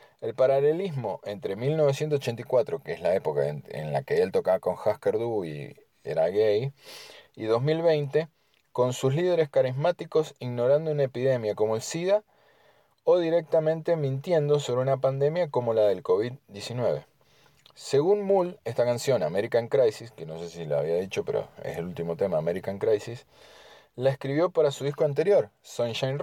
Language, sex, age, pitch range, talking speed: Spanish, male, 30-49, 120-160 Hz, 160 wpm